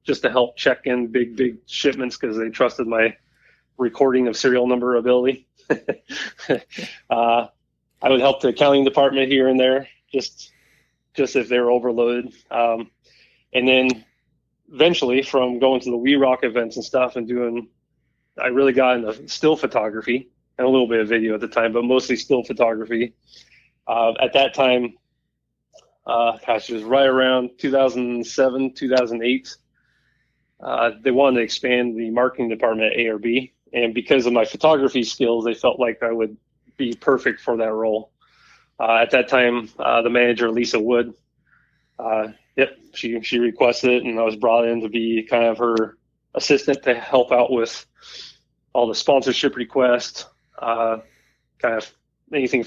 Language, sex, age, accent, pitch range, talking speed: English, male, 20-39, American, 115-130 Hz, 165 wpm